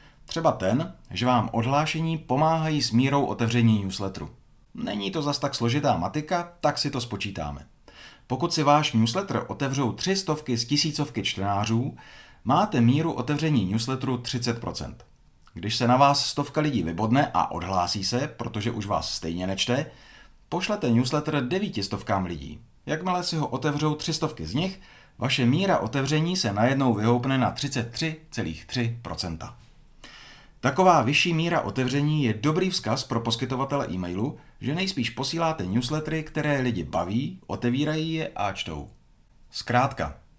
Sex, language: male, Czech